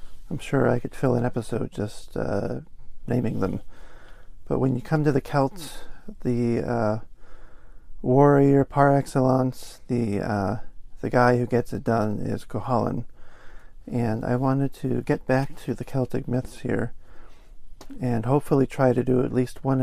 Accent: American